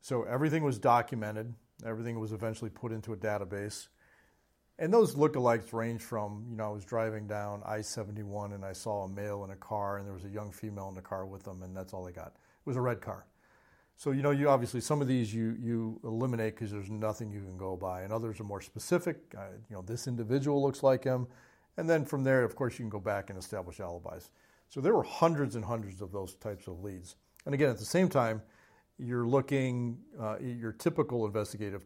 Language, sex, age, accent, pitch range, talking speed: English, male, 40-59, American, 105-125 Hz, 225 wpm